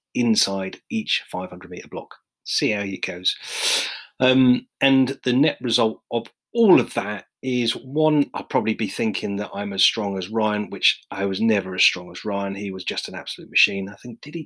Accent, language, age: British, English, 40-59